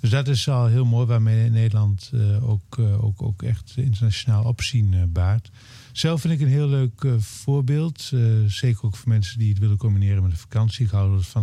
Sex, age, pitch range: male, 50-69, 110-125 Hz